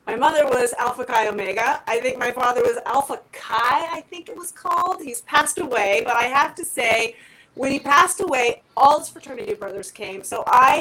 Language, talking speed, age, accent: English, 205 wpm, 30-49, American